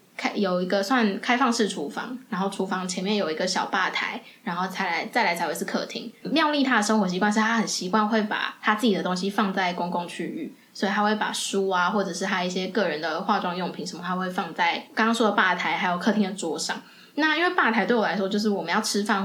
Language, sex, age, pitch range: Chinese, female, 10-29, 200-250 Hz